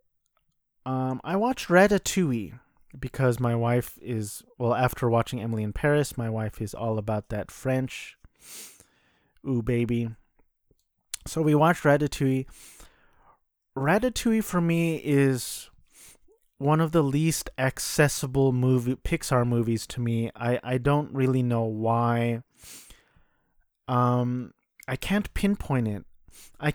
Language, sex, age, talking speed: English, male, 30-49, 120 wpm